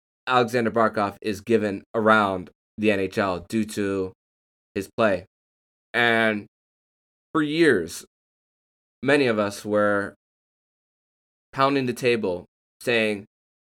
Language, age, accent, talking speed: English, 20-39, American, 95 wpm